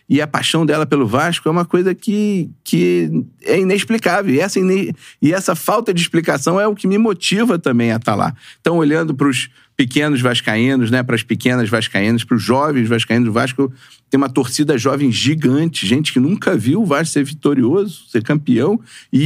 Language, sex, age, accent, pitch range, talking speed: Portuguese, male, 50-69, Brazilian, 125-150 Hz, 195 wpm